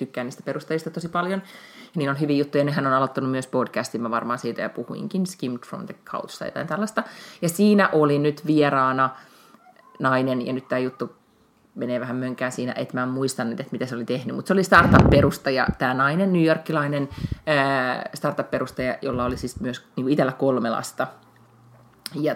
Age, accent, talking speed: 30-49, native, 180 wpm